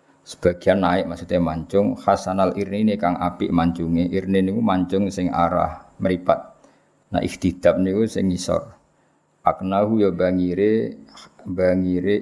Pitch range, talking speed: 95-115 Hz, 125 wpm